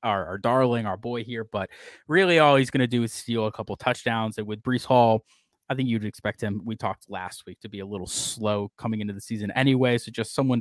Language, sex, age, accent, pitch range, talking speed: English, male, 20-39, American, 105-125 Hz, 250 wpm